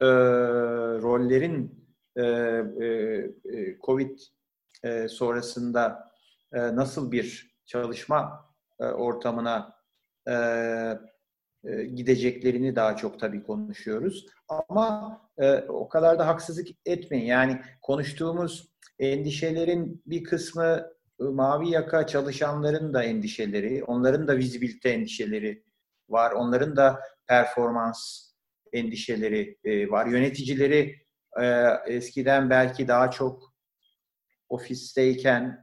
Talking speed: 95 wpm